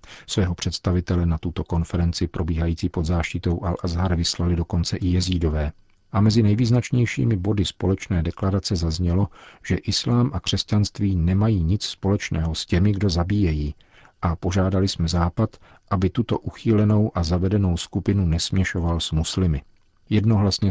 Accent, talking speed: native, 130 wpm